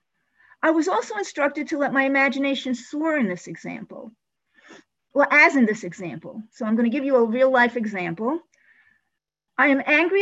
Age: 50-69